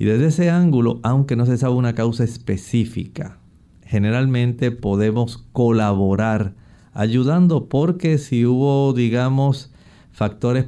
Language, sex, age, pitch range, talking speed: Spanish, male, 50-69, 100-125 Hz, 110 wpm